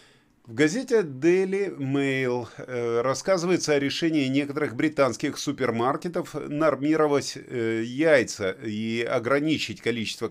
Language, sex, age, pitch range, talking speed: Russian, male, 30-49, 115-150 Hz, 85 wpm